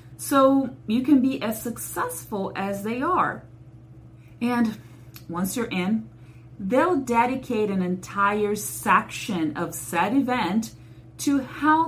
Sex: female